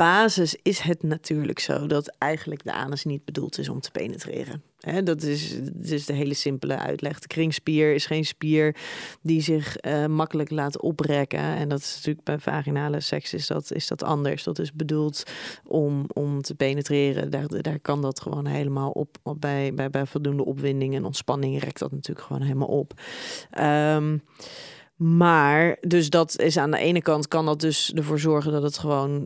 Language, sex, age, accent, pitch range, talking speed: Dutch, female, 30-49, Dutch, 150-165 Hz, 165 wpm